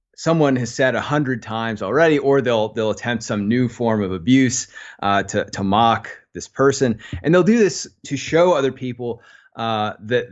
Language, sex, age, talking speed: English, male, 30-49, 185 wpm